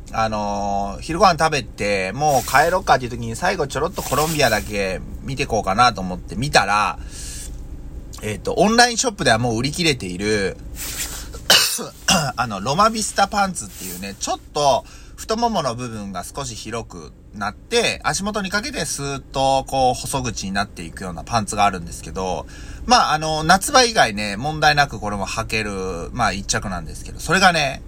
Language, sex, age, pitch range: Japanese, male, 30-49, 95-150 Hz